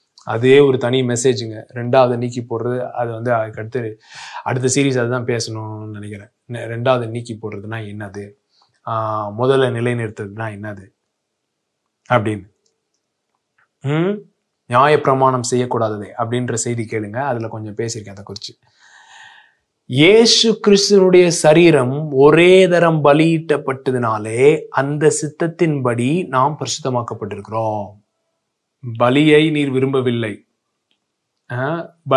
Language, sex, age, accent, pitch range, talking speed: English, male, 20-39, Indian, 115-150 Hz, 65 wpm